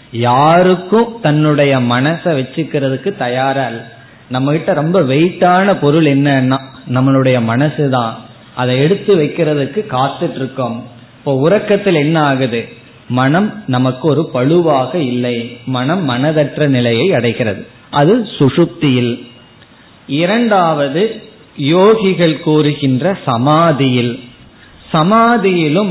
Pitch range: 130-165 Hz